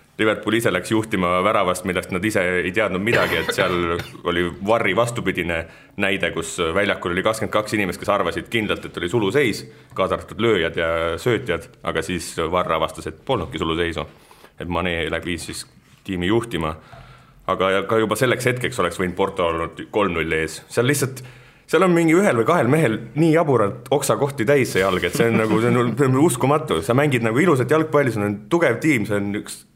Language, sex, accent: English, male, Finnish